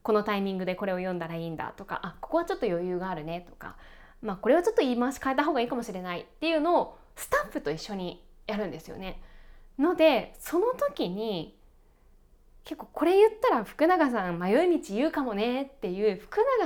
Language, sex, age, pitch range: Japanese, female, 20-39, 205-325 Hz